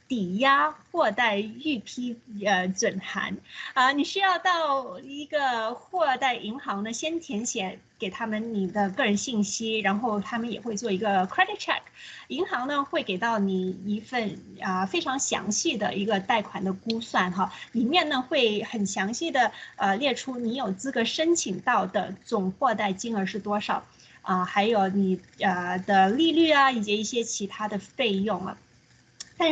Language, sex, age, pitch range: Chinese, female, 20-39, 200-265 Hz